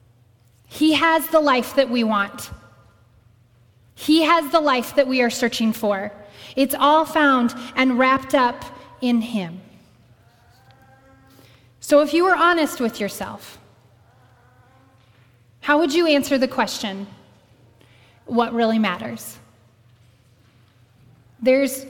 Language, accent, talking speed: English, American, 110 wpm